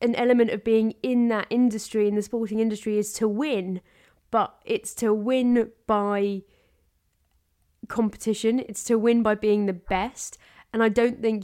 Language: English